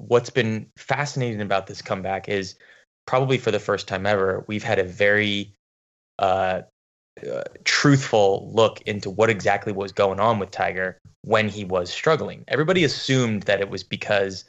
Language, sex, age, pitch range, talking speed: English, male, 20-39, 100-130 Hz, 160 wpm